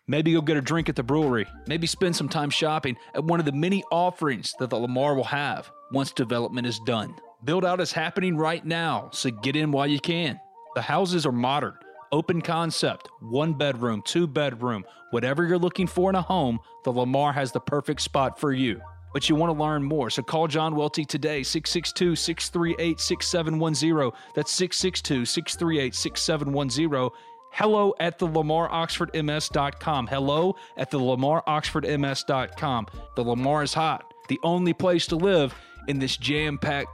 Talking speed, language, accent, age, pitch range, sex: 165 wpm, English, American, 30-49, 135-180 Hz, male